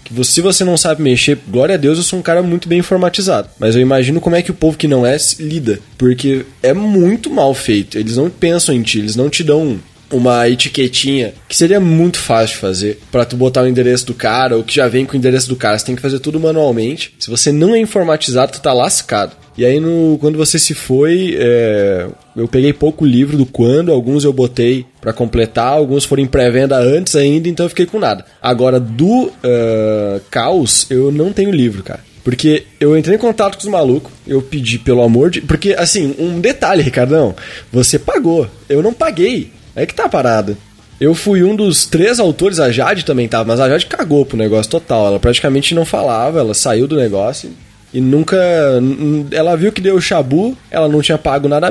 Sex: male